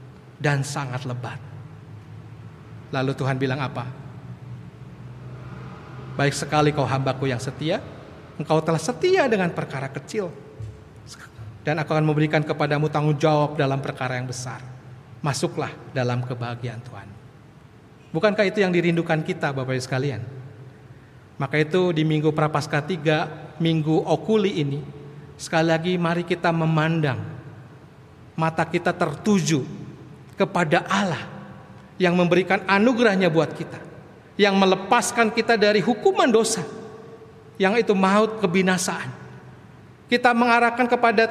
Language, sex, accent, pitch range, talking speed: Indonesian, male, native, 135-220 Hz, 110 wpm